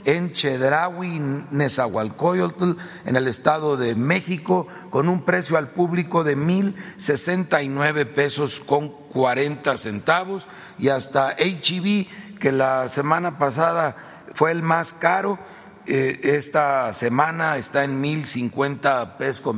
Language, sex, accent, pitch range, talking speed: Spanish, male, Mexican, 130-165 Hz, 125 wpm